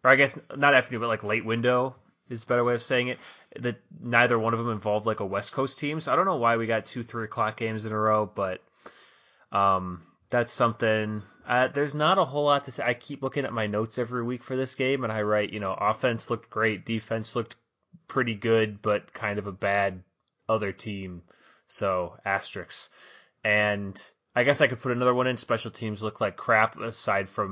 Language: English